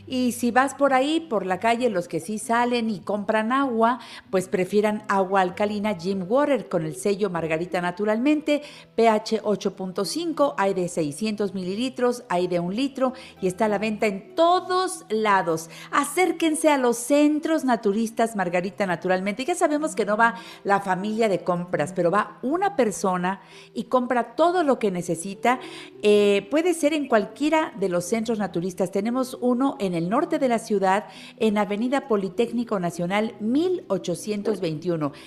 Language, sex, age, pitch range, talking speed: Spanish, female, 50-69, 190-260 Hz, 155 wpm